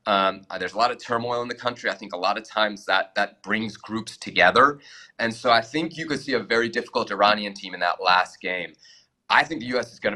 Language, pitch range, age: English, 105-130 Hz, 30-49